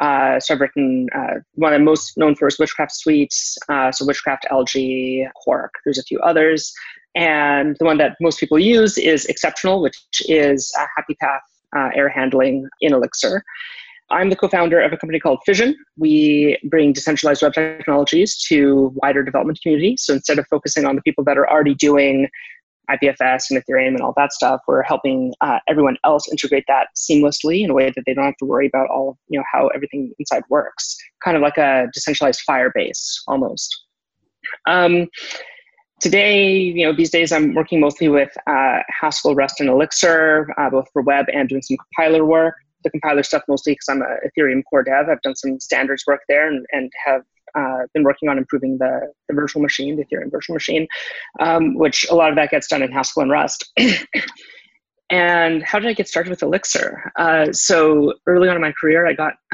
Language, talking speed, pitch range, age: English, 195 wpm, 140-165 Hz, 20-39